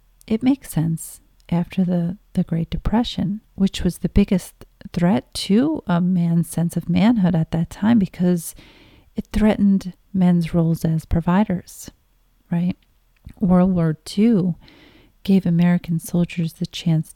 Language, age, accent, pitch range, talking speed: English, 40-59, American, 170-185 Hz, 135 wpm